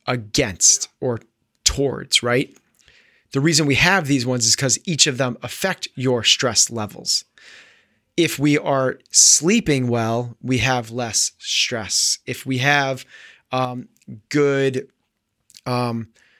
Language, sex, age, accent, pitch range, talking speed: English, male, 30-49, American, 120-150 Hz, 125 wpm